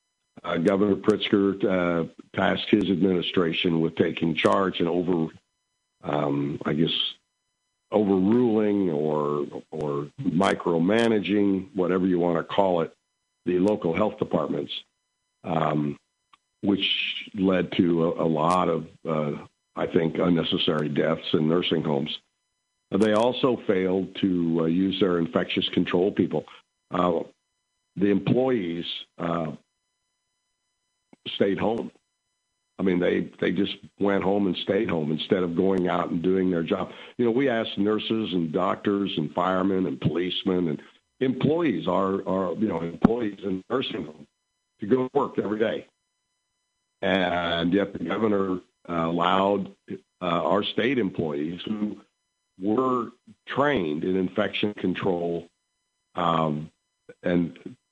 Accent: American